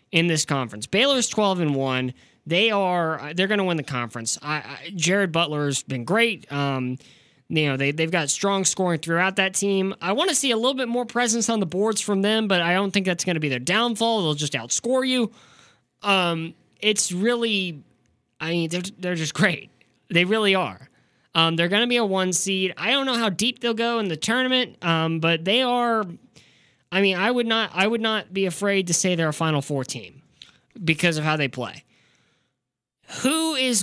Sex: male